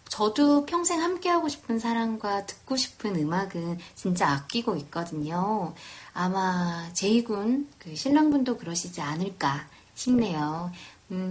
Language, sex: Korean, female